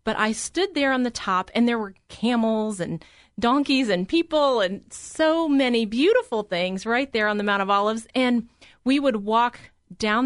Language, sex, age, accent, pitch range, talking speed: English, female, 30-49, American, 205-270 Hz, 185 wpm